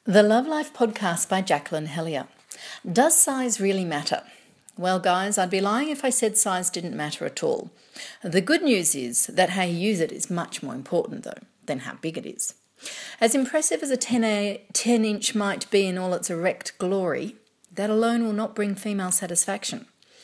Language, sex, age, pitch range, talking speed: English, female, 40-59, 180-235 Hz, 185 wpm